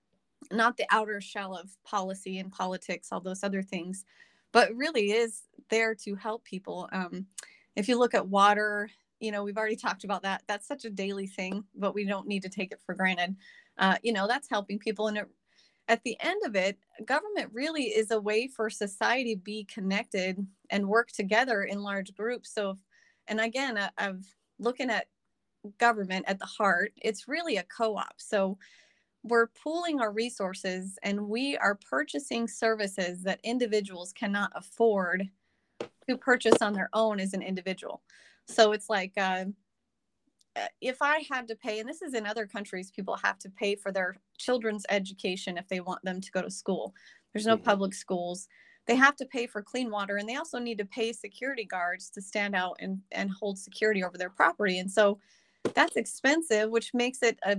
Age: 30-49